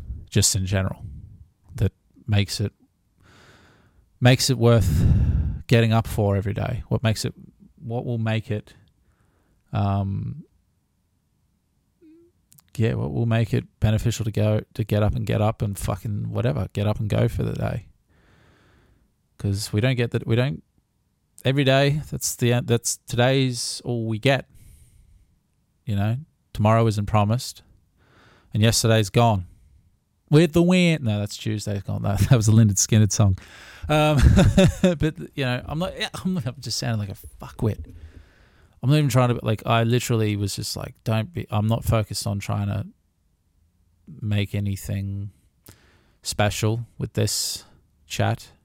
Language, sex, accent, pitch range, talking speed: English, male, Australian, 100-120 Hz, 150 wpm